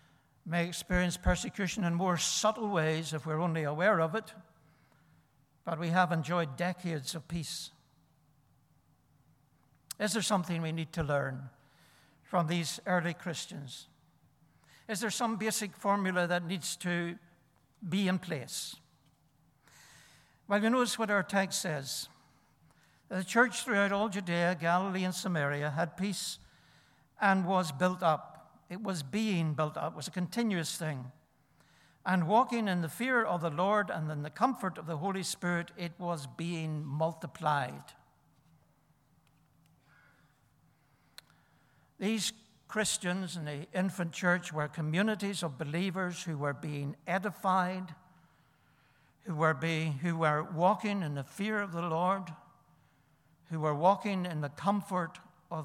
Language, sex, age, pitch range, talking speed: English, male, 60-79, 155-190 Hz, 135 wpm